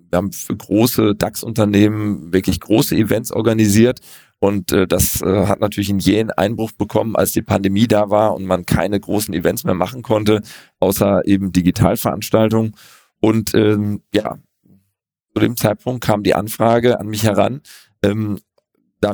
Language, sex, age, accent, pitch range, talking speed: German, male, 40-59, German, 100-120 Hz, 155 wpm